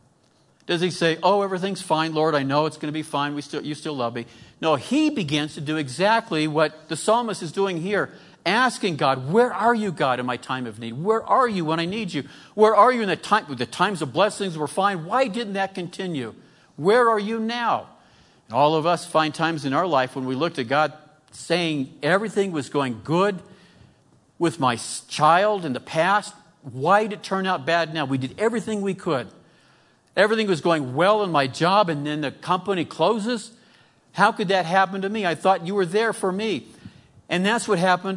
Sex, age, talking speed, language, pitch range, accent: male, 50-69, 210 wpm, English, 150-200 Hz, American